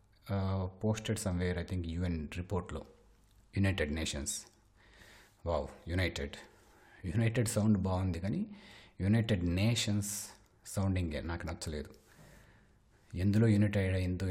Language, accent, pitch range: Telugu, native, 85-100 Hz